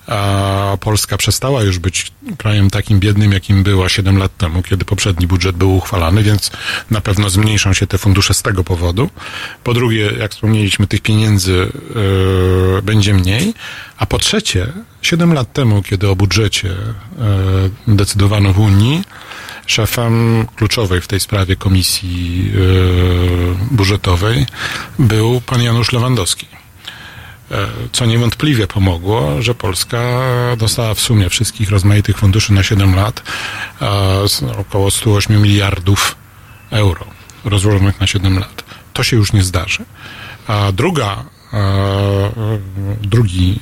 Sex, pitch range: male, 95-110 Hz